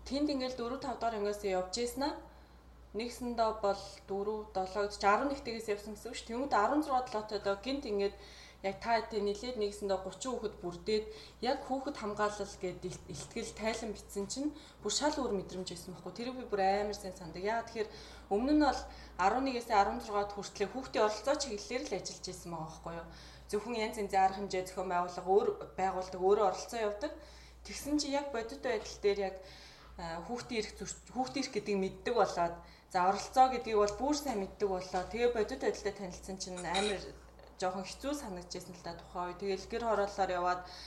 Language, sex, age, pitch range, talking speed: English, female, 20-39, 185-230 Hz, 135 wpm